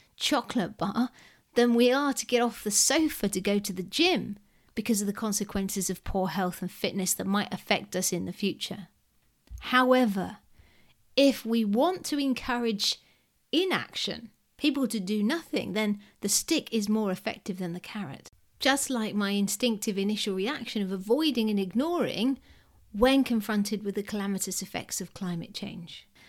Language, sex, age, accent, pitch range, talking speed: English, female, 40-59, British, 200-260 Hz, 160 wpm